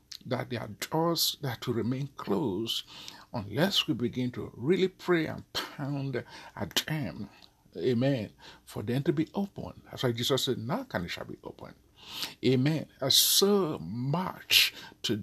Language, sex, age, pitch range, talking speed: English, male, 50-69, 120-170 Hz, 155 wpm